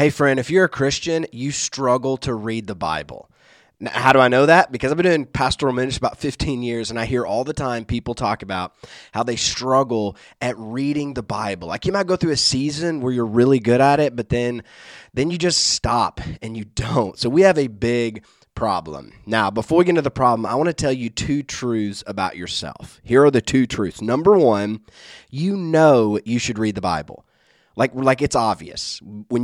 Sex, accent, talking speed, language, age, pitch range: male, American, 215 wpm, English, 20-39, 110-145 Hz